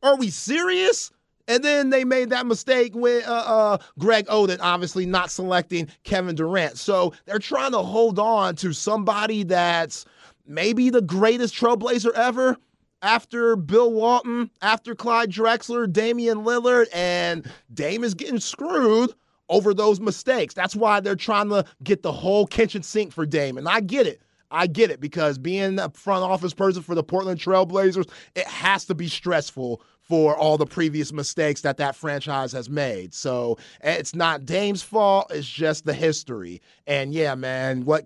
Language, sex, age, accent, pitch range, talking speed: English, male, 30-49, American, 150-210 Hz, 165 wpm